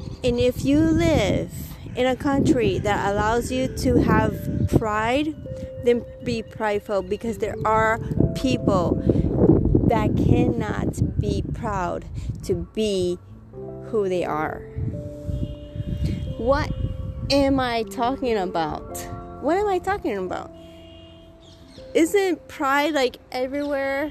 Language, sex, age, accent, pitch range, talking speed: English, female, 30-49, American, 215-275 Hz, 105 wpm